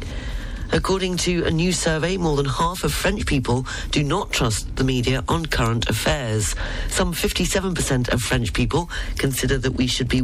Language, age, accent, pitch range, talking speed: English, 40-59, British, 115-150 Hz, 170 wpm